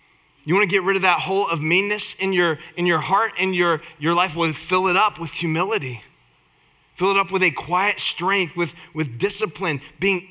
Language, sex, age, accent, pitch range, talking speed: English, male, 20-39, American, 160-205 Hz, 210 wpm